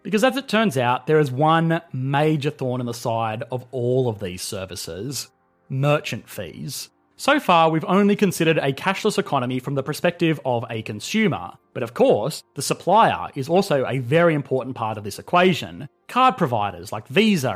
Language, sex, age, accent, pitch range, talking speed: English, male, 30-49, Australian, 125-175 Hz, 180 wpm